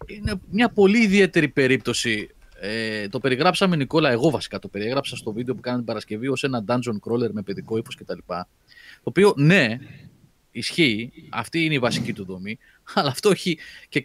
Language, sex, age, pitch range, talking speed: Greek, male, 30-49, 115-170 Hz, 170 wpm